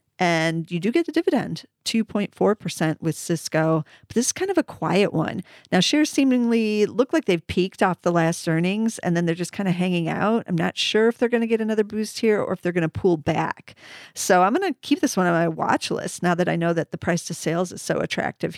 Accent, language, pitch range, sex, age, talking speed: American, English, 170-205 Hz, female, 40-59, 250 wpm